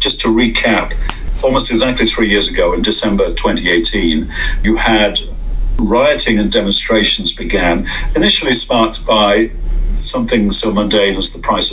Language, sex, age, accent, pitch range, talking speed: English, male, 50-69, British, 105-115 Hz, 135 wpm